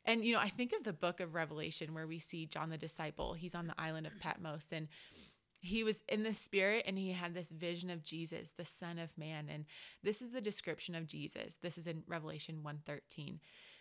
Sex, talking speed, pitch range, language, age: female, 220 wpm, 165-200 Hz, English, 20-39